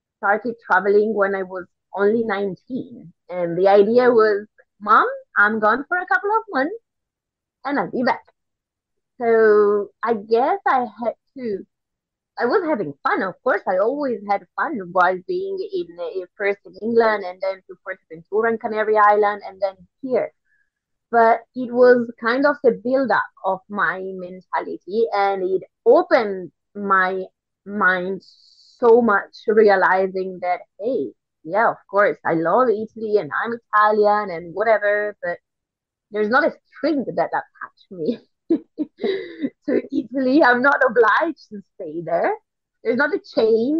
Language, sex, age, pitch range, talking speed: English, female, 20-39, 200-280 Hz, 150 wpm